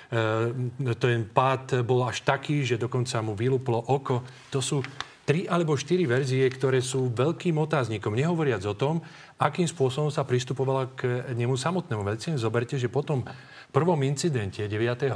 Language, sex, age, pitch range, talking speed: Slovak, male, 40-59, 115-150 Hz, 150 wpm